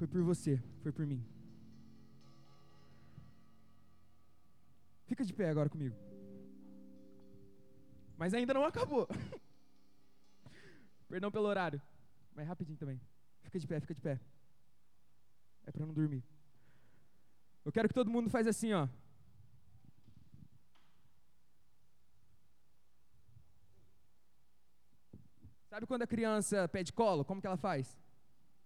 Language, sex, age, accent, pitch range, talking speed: Portuguese, male, 20-39, Brazilian, 125-180 Hz, 105 wpm